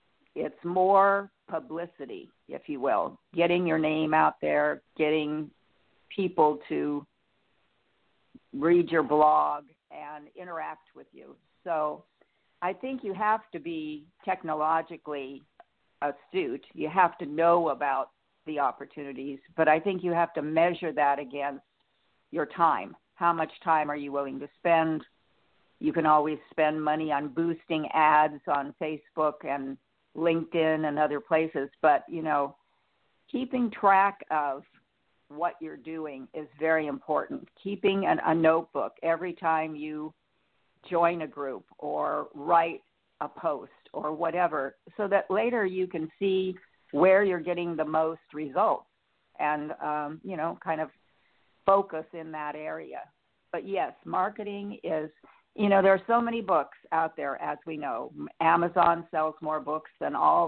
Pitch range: 150-175 Hz